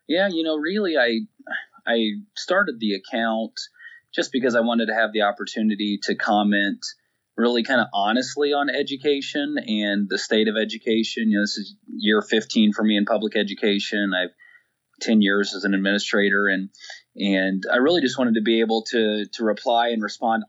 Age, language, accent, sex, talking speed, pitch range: 30-49, English, American, male, 180 wpm, 105-125 Hz